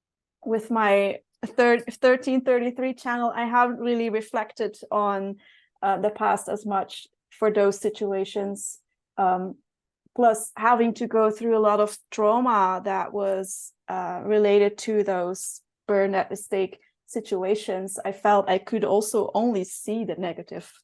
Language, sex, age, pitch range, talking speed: English, female, 30-49, 200-245 Hz, 135 wpm